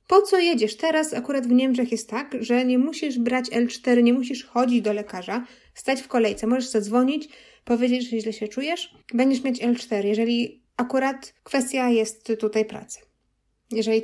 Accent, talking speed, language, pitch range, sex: native, 165 wpm, Polish, 230-265 Hz, female